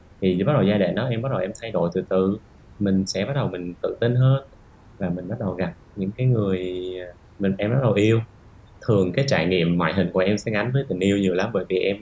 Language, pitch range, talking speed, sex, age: Vietnamese, 90-110 Hz, 265 wpm, male, 20-39